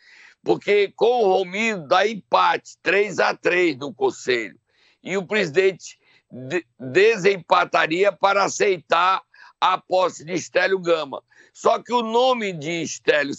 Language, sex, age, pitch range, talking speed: Portuguese, male, 60-79, 190-275 Hz, 125 wpm